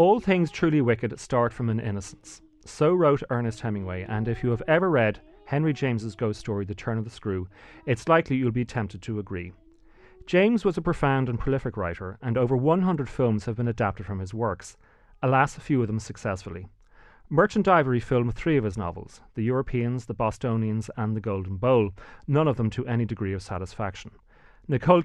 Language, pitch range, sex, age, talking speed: English, 105-135 Hz, male, 30-49, 195 wpm